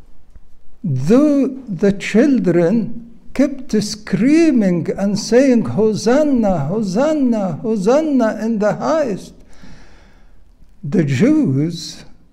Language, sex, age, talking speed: English, male, 60-79, 75 wpm